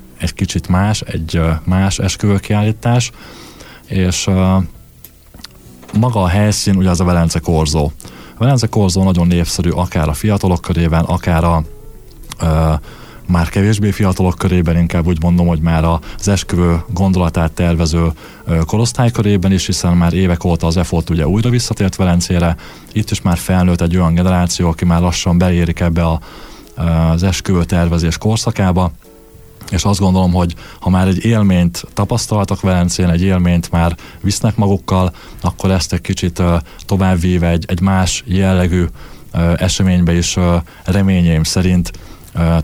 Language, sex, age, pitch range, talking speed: Hungarian, male, 20-39, 85-95 Hz, 145 wpm